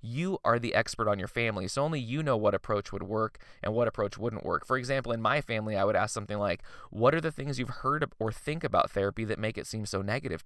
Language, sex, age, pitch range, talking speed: English, male, 20-39, 105-135 Hz, 270 wpm